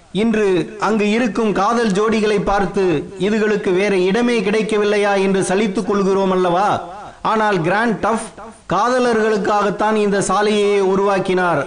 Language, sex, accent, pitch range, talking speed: Tamil, male, native, 185-220 Hz, 110 wpm